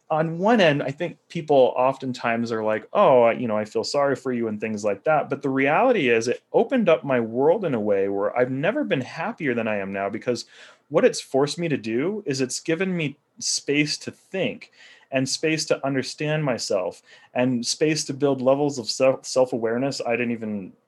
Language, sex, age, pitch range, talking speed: English, male, 30-49, 115-155 Hz, 205 wpm